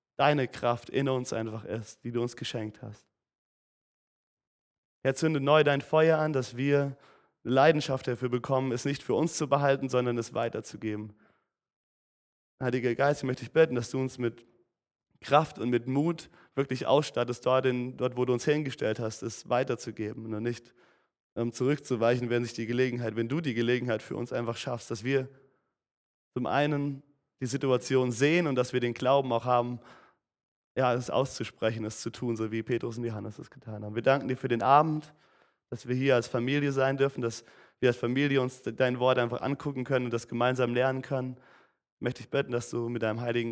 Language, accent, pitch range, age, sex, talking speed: German, German, 115-135 Hz, 30-49, male, 185 wpm